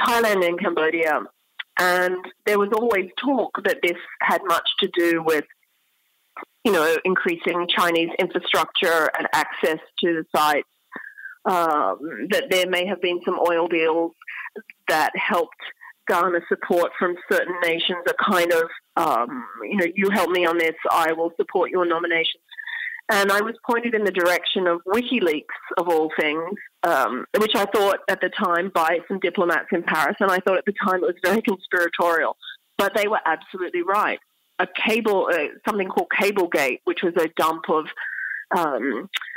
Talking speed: 165 wpm